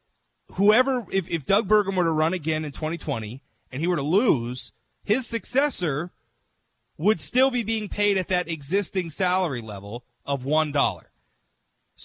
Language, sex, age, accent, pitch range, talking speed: English, male, 30-49, American, 140-205 Hz, 150 wpm